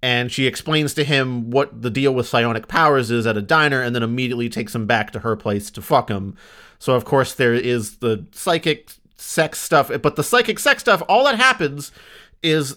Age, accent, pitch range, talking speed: 30-49, American, 125-165 Hz, 210 wpm